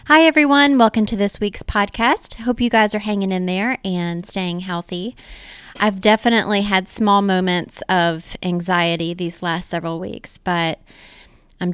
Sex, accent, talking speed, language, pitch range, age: female, American, 155 wpm, English, 170-200 Hz, 20-39